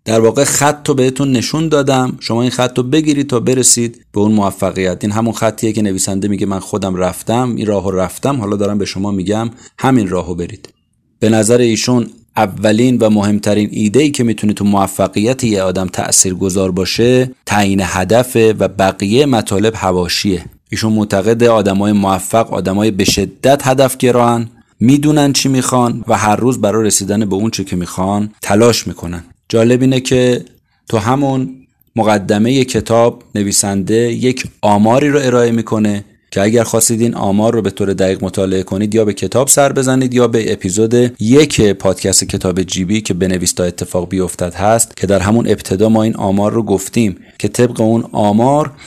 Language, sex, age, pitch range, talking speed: Persian, male, 30-49, 100-120 Hz, 170 wpm